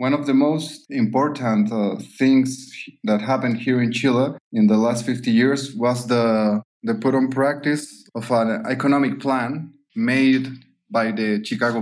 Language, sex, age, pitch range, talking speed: English, male, 20-39, 115-140 Hz, 150 wpm